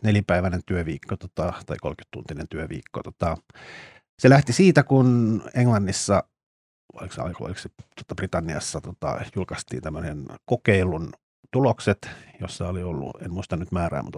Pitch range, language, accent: 90-120 Hz, Finnish, native